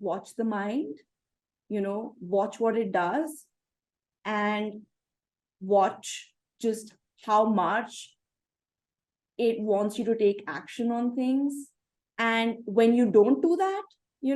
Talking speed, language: 120 wpm, English